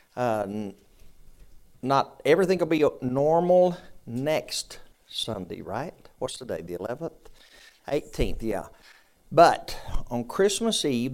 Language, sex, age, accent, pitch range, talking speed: English, male, 60-79, American, 115-155 Hz, 110 wpm